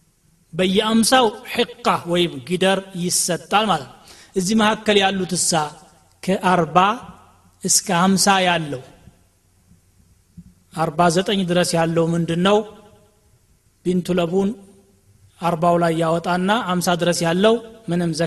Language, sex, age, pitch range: Amharic, male, 30-49, 165-205 Hz